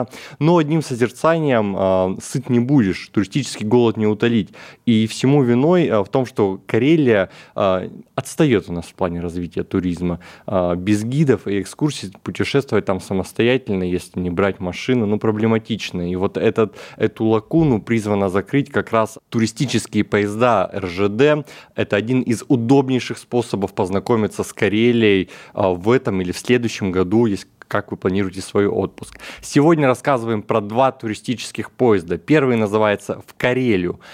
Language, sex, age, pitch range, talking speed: Russian, male, 20-39, 95-125 Hz, 145 wpm